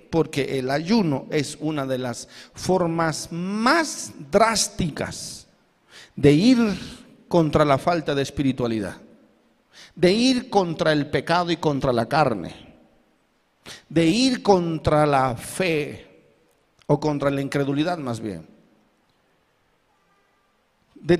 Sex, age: male, 50-69